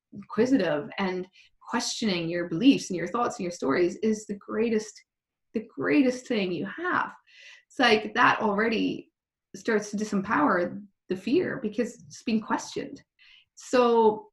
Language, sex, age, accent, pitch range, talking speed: English, female, 20-39, American, 205-270 Hz, 140 wpm